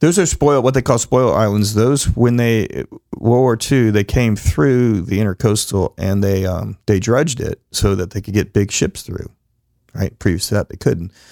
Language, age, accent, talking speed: English, 40-59, American, 205 wpm